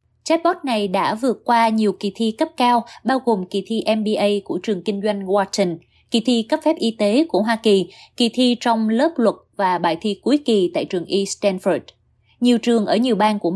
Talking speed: 215 wpm